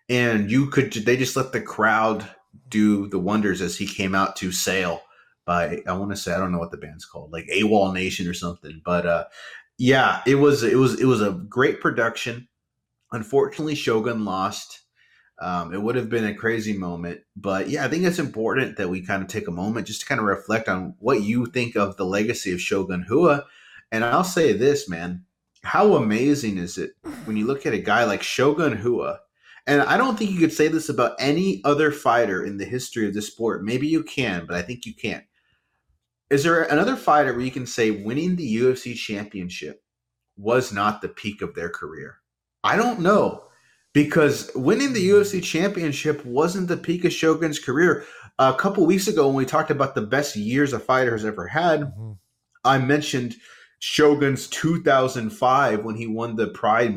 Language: English